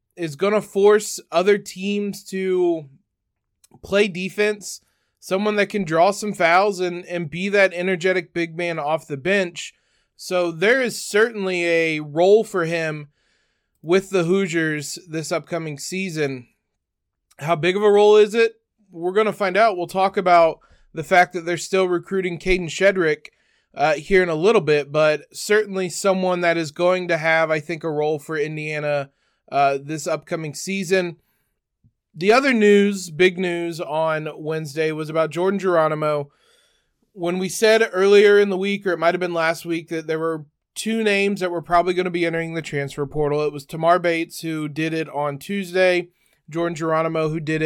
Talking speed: 175 wpm